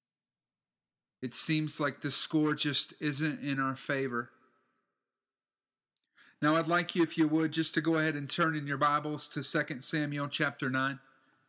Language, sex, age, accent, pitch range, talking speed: English, male, 40-59, American, 140-170 Hz, 160 wpm